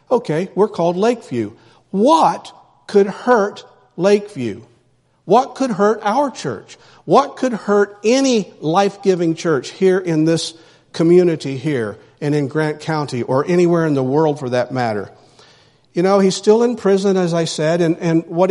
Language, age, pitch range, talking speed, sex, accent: English, 50-69, 150-195 Hz, 155 wpm, male, American